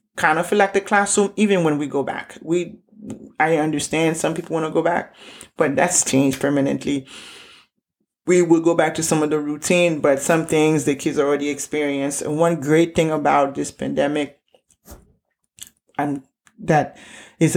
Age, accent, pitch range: 30-49, American, 145-170 Hz